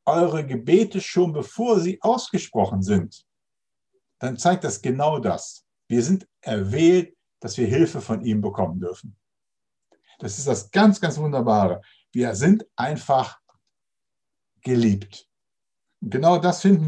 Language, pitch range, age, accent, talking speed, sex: German, 115-180 Hz, 60-79, German, 130 wpm, male